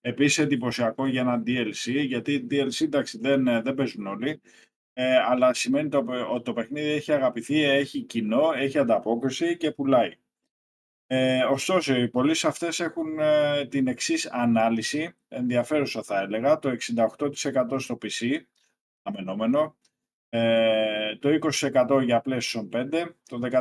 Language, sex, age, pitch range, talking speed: Greek, male, 20-39, 120-145 Hz, 130 wpm